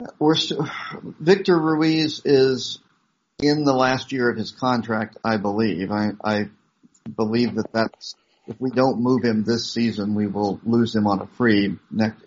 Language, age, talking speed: English, 50-69, 165 wpm